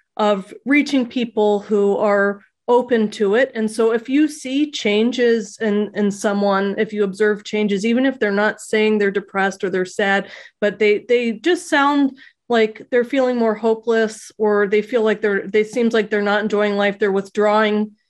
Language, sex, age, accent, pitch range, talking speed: English, female, 30-49, American, 205-230 Hz, 180 wpm